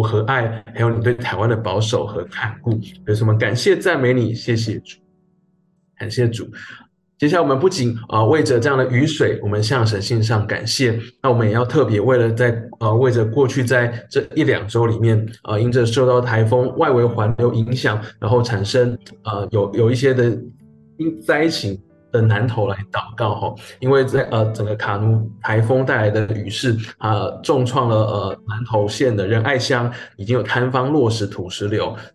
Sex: male